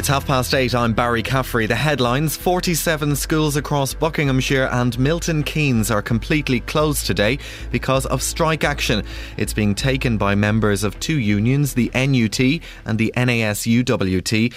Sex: male